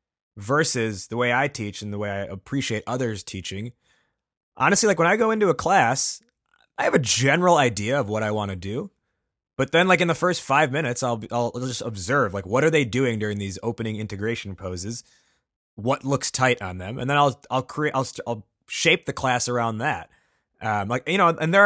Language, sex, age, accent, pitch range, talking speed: English, male, 20-39, American, 105-135 Hz, 210 wpm